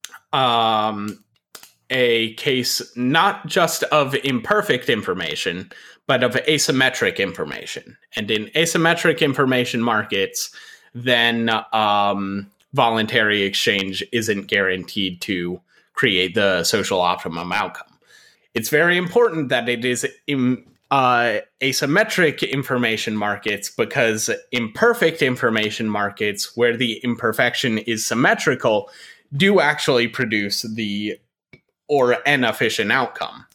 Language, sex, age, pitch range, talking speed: English, male, 30-49, 105-150 Hz, 100 wpm